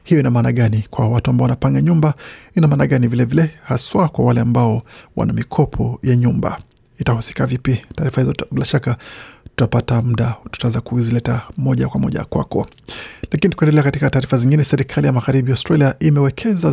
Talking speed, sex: 170 wpm, male